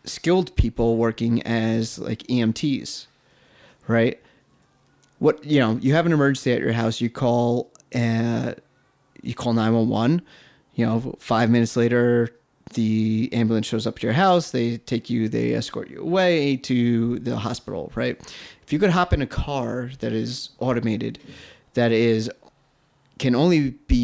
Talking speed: 150 wpm